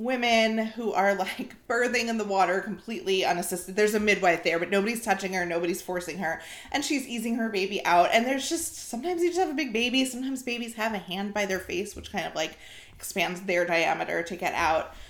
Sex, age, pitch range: female, 30-49, 180-240 Hz